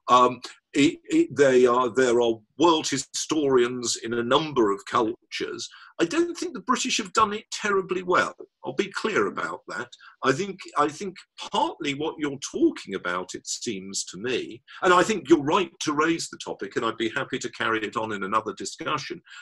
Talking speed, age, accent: 185 wpm, 50-69, British